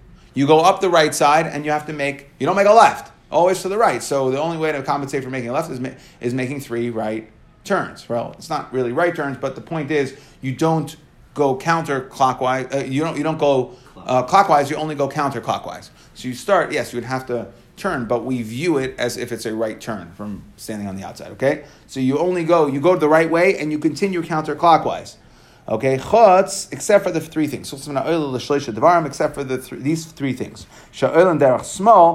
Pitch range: 130-175 Hz